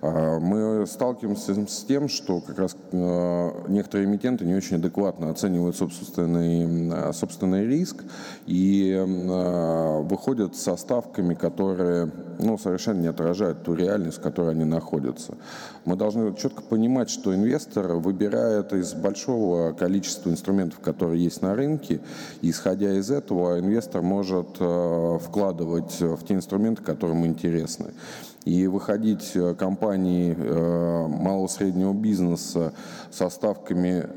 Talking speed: 120 wpm